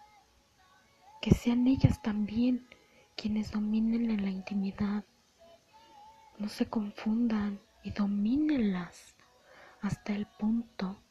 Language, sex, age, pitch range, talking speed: Spanish, female, 30-49, 200-230 Hz, 90 wpm